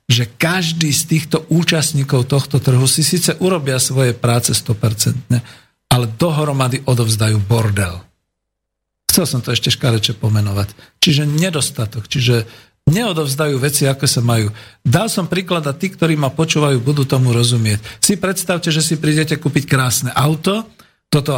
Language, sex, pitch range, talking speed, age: Slovak, male, 125-160 Hz, 145 wpm, 50-69